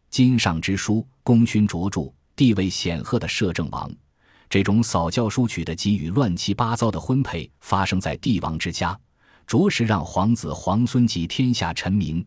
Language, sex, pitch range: Chinese, male, 85-115 Hz